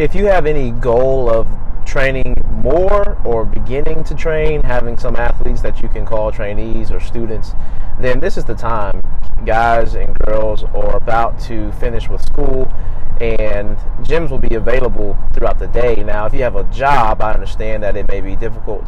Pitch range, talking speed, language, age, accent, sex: 100-125 Hz, 180 wpm, English, 30-49, American, male